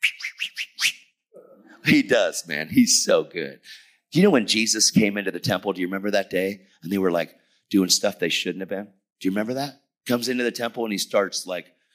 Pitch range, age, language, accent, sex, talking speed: 100-145 Hz, 40-59, English, American, male, 210 wpm